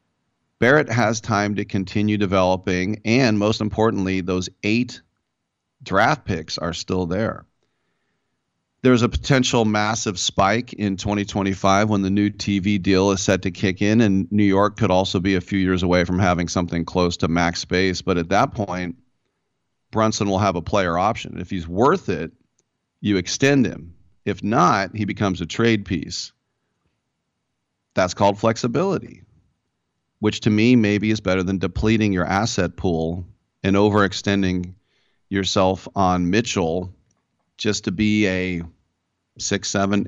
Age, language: 40-59, English